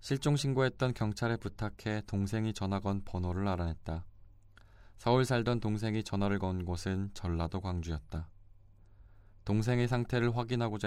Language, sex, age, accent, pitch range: Korean, male, 20-39, native, 90-105 Hz